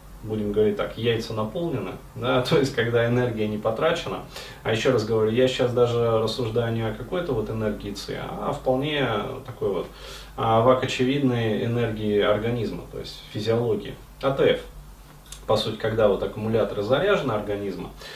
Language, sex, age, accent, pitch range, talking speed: Russian, male, 30-49, native, 110-130 Hz, 150 wpm